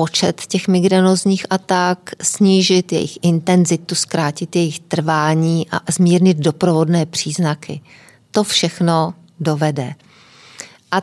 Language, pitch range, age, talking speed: Czech, 160-185 Hz, 40-59, 100 wpm